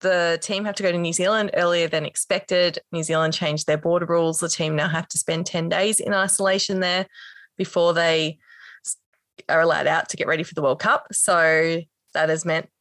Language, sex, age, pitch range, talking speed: English, female, 20-39, 160-185 Hz, 205 wpm